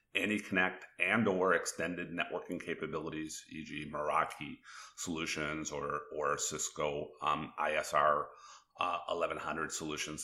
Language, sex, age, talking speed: English, male, 40-59, 105 wpm